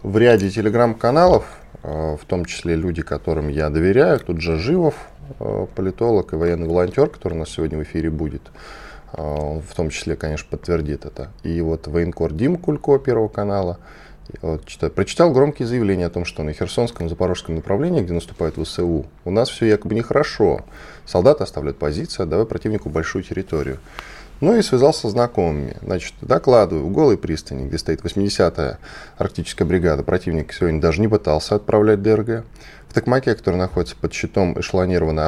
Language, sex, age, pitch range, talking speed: Russian, male, 10-29, 80-105 Hz, 160 wpm